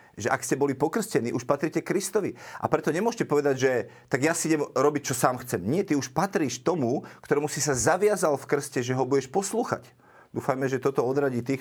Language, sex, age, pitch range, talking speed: Slovak, male, 40-59, 130-155 Hz, 210 wpm